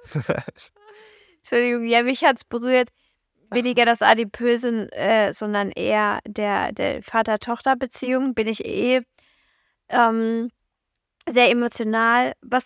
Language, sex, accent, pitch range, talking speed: German, female, German, 220-260 Hz, 105 wpm